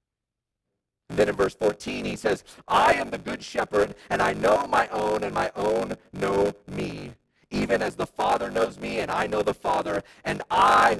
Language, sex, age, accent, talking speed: English, male, 40-59, American, 190 wpm